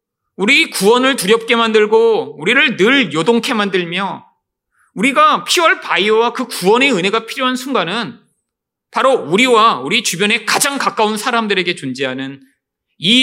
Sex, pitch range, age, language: male, 155-240 Hz, 40-59, Korean